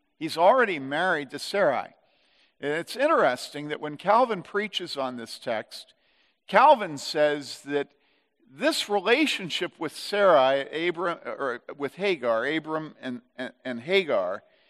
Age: 50-69